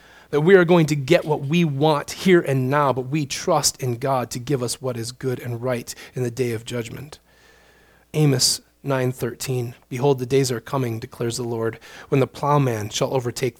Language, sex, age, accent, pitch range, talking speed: English, male, 30-49, American, 120-150 Hz, 200 wpm